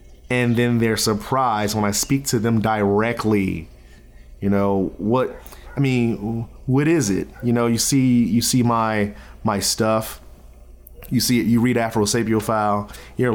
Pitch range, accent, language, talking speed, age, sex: 85-125 Hz, American, English, 155 wpm, 30-49, male